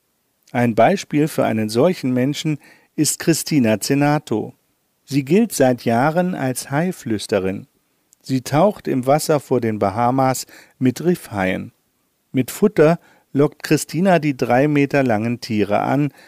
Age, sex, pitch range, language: 50-69, male, 120-155 Hz, German